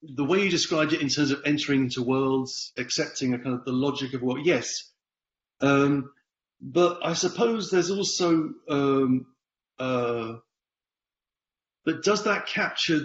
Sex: male